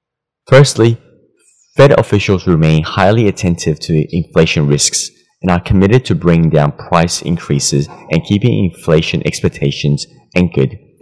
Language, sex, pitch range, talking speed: English, male, 80-110 Hz, 120 wpm